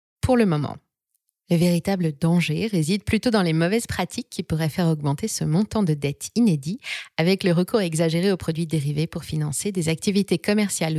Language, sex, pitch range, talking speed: French, female, 160-215 Hz, 180 wpm